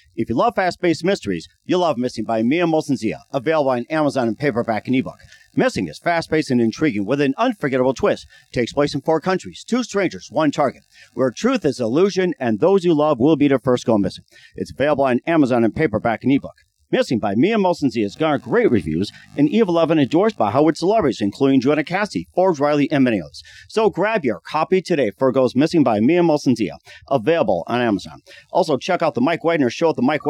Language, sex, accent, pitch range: English, male, American, 125-160 Hz